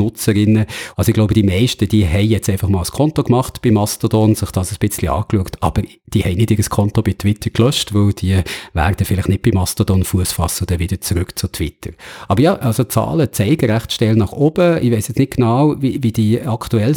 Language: German